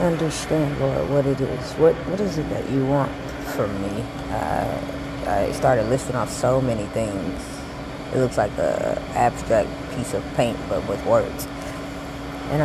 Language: English